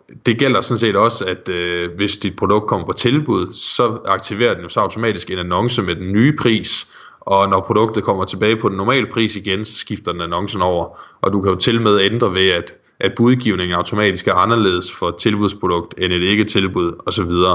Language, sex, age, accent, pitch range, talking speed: Danish, male, 20-39, native, 90-115 Hz, 215 wpm